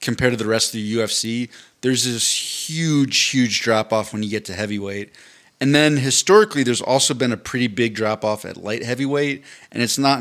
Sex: male